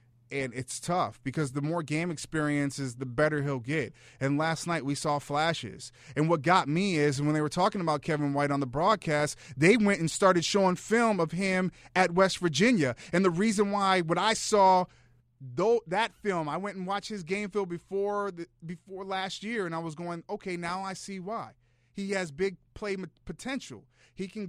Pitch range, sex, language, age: 145-225 Hz, male, English, 30-49